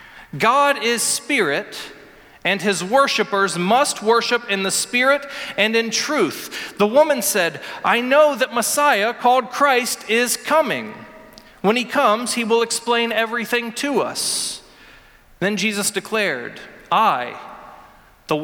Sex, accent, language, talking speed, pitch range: male, American, English, 125 wpm, 215-280 Hz